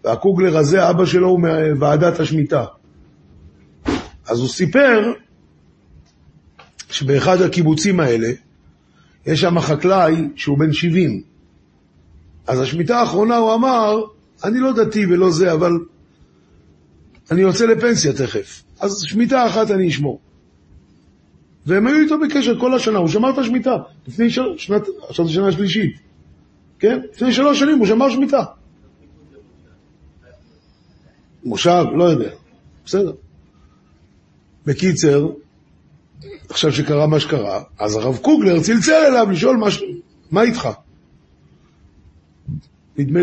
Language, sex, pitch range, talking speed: Hebrew, male, 135-220 Hz, 110 wpm